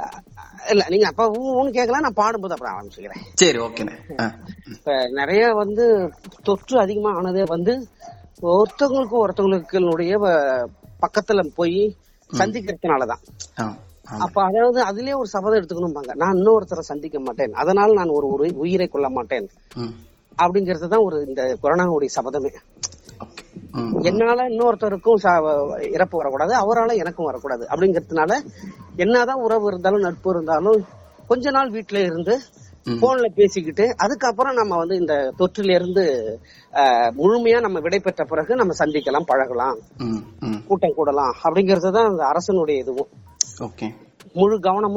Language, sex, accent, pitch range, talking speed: Tamil, female, native, 160-220 Hz, 75 wpm